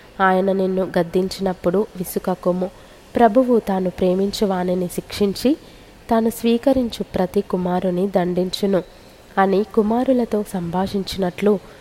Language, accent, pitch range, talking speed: Telugu, native, 185-210 Hz, 85 wpm